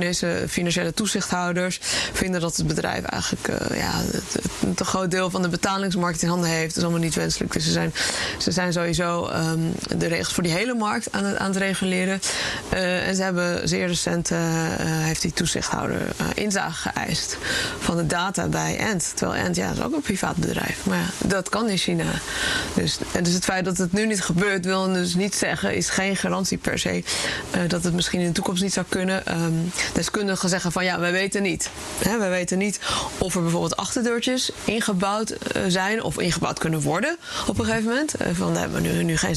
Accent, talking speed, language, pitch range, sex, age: Dutch, 215 wpm, Dutch, 170-195 Hz, female, 20-39